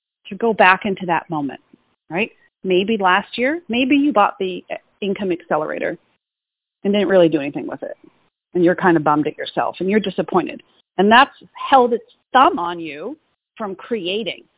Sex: female